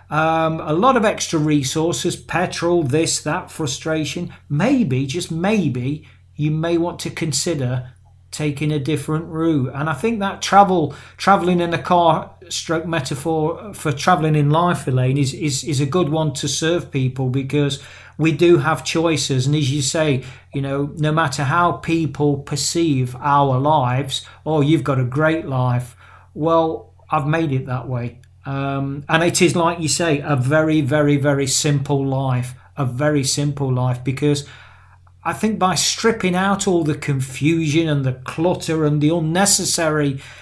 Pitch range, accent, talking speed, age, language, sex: 135-170 Hz, British, 160 wpm, 40-59, English, male